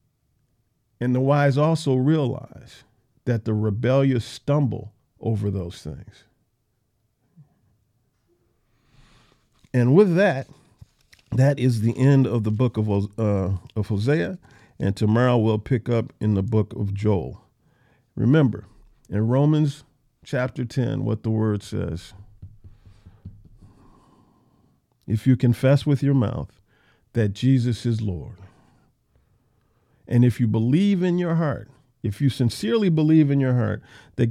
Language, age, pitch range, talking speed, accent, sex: English, 50-69, 110-135 Hz, 120 wpm, American, male